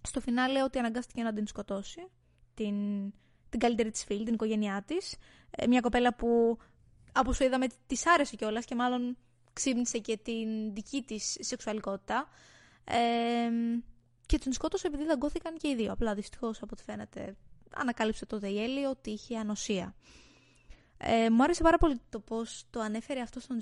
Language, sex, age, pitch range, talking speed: Greek, female, 20-39, 205-260 Hz, 165 wpm